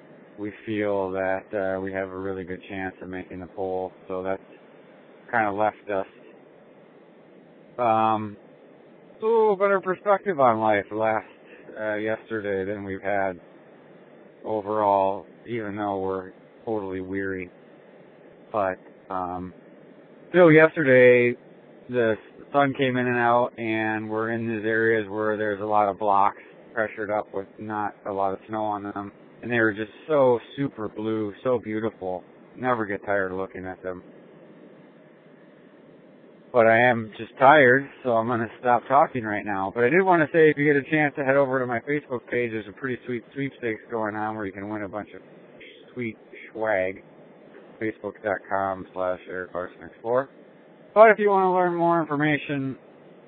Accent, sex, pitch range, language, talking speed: American, male, 95-125 Hz, English, 160 wpm